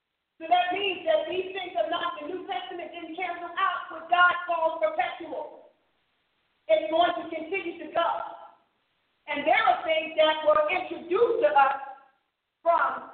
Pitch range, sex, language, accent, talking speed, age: 300-345 Hz, female, English, American, 155 wpm, 40-59